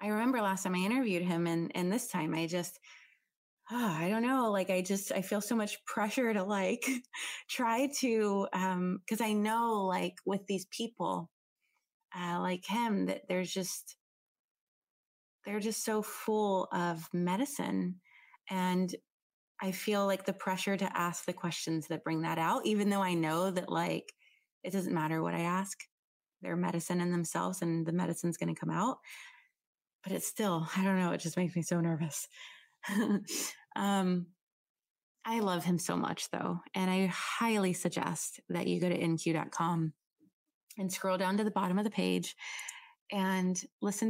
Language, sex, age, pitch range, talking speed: English, female, 20-39, 170-210 Hz, 170 wpm